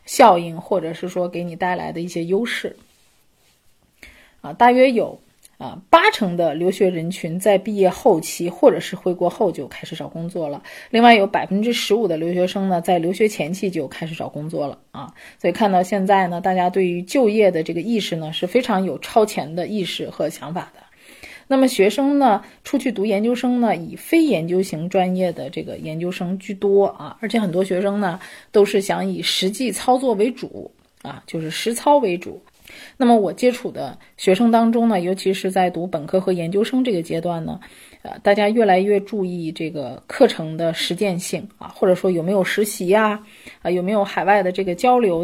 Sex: female